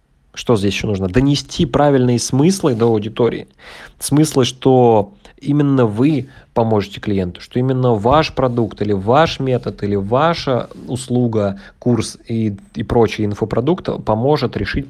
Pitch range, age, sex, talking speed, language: 110-135 Hz, 20-39, male, 130 wpm, Russian